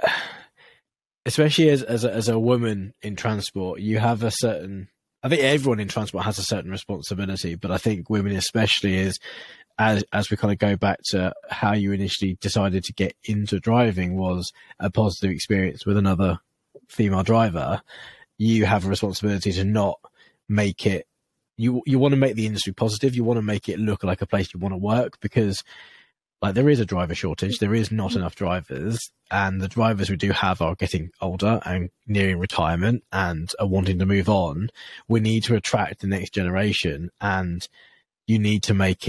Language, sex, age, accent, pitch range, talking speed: English, male, 20-39, British, 95-110 Hz, 190 wpm